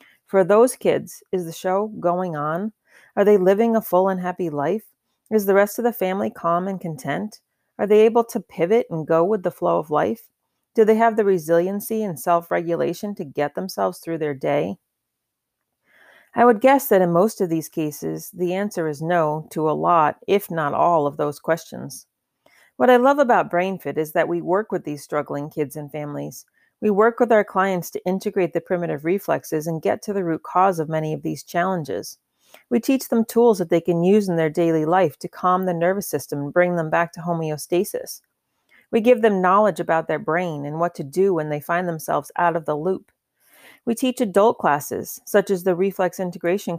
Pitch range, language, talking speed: 165-205 Hz, English, 205 wpm